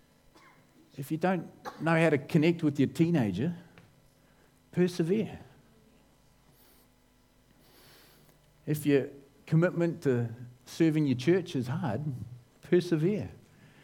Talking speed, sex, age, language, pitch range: 90 wpm, male, 50-69, English, 125-160 Hz